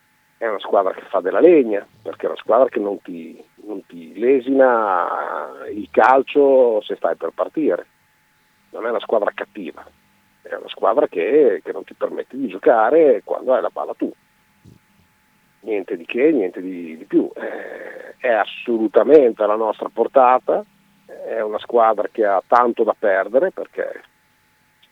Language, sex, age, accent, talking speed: Italian, male, 50-69, native, 155 wpm